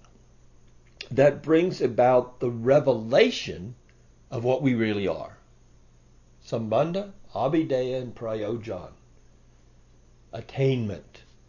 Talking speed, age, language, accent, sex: 80 wpm, 60-79, English, American, male